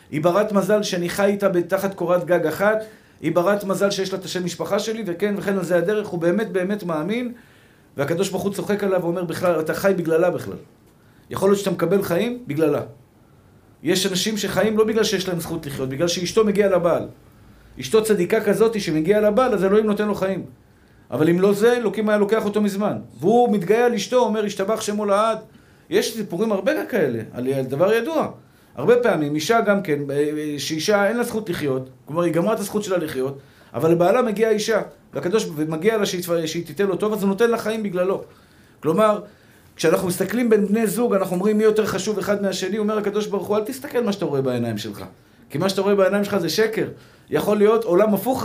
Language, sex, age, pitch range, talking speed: Hebrew, male, 50-69, 170-215 Hz, 195 wpm